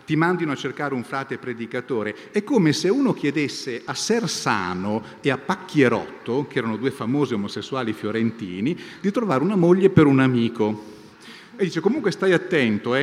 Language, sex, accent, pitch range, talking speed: Italian, male, native, 110-150 Hz, 165 wpm